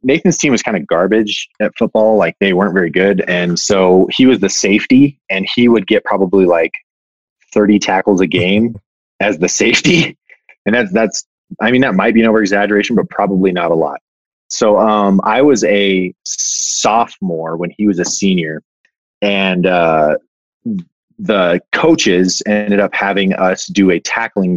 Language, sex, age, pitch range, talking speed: English, male, 20-39, 95-110 Hz, 170 wpm